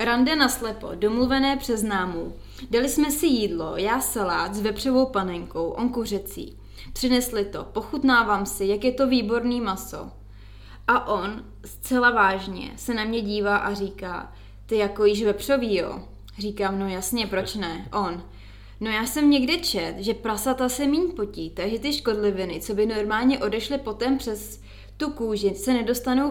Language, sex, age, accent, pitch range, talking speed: Czech, female, 20-39, native, 195-250 Hz, 155 wpm